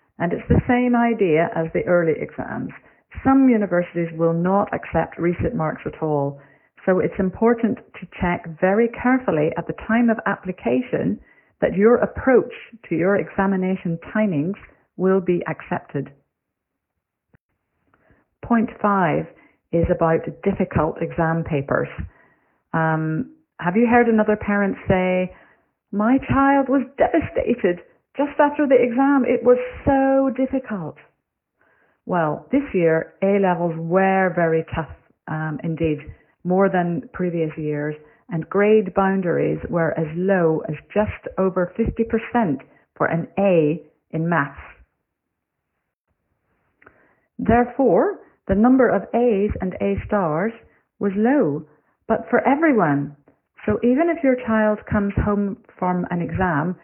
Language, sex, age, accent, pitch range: Chinese, female, 50-69, British, 165-230 Hz